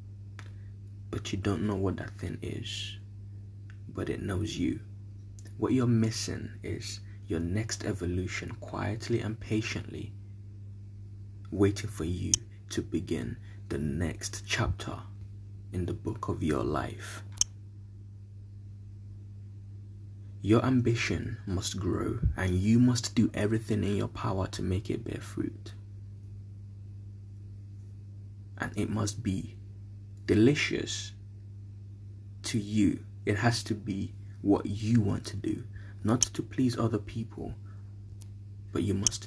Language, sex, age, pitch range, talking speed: English, male, 20-39, 100-105 Hz, 120 wpm